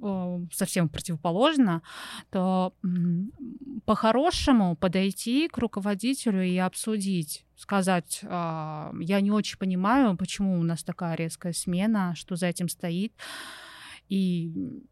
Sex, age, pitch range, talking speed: female, 20-39, 180-210 Hz, 100 wpm